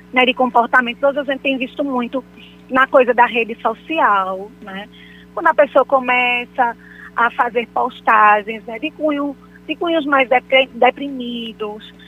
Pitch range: 215-265 Hz